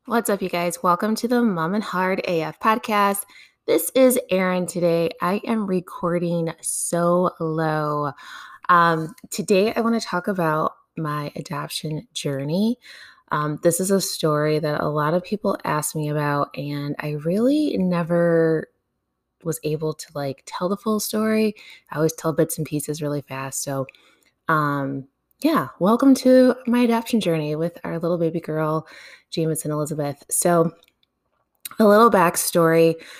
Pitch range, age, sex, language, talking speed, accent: 150-200 Hz, 20-39, female, English, 150 wpm, American